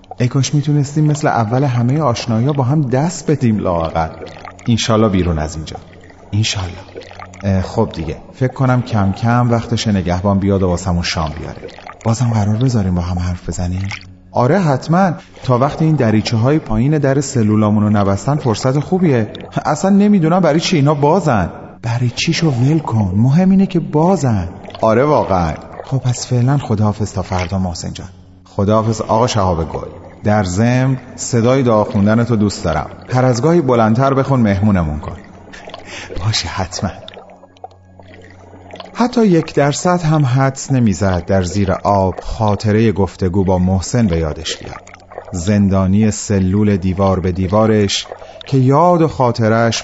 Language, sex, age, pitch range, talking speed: Persian, male, 30-49, 95-130 Hz, 140 wpm